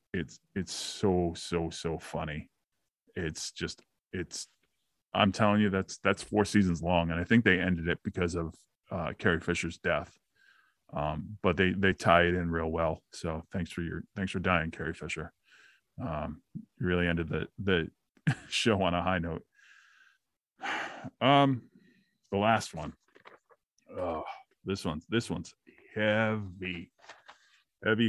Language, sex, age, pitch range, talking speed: English, male, 30-49, 85-105 Hz, 145 wpm